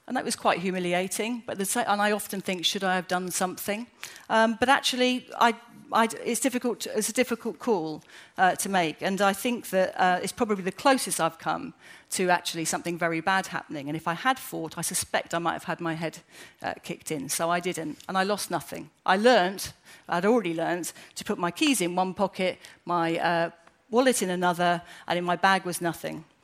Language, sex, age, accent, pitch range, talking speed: English, female, 40-59, British, 170-225 Hz, 215 wpm